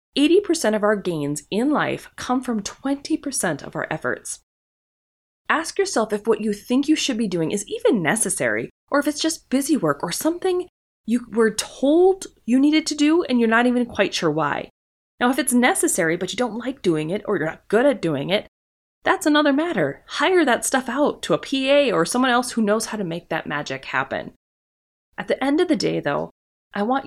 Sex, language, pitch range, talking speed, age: female, English, 200-285 Hz, 205 wpm, 20-39